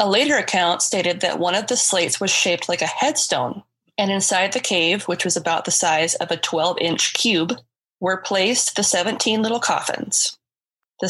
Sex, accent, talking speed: female, American, 185 wpm